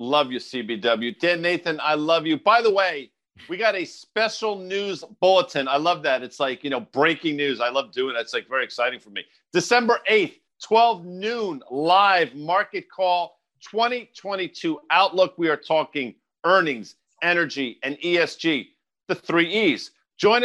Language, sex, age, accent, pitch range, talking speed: English, male, 50-69, American, 150-210 Hz, 165 wpm